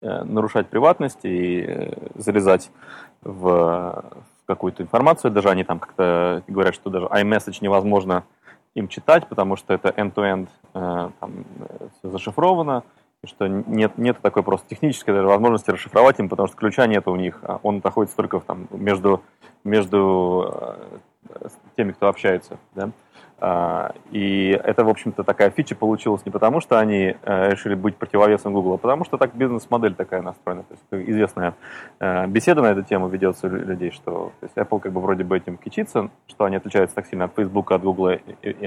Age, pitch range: 30-49, 95-110 Hz